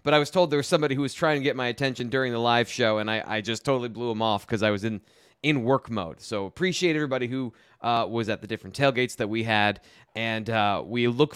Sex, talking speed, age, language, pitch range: male, 265 wpm, 30-49, English, 120-170 Hz